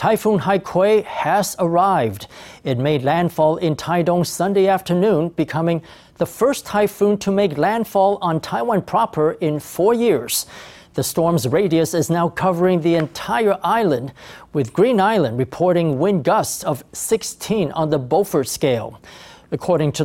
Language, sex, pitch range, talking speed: English, male, 155-195 Hz, 140 wpm